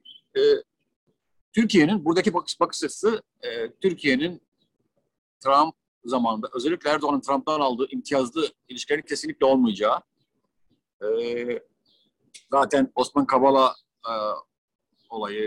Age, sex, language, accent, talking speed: 50-69, male, Turkish, native, 85 wpm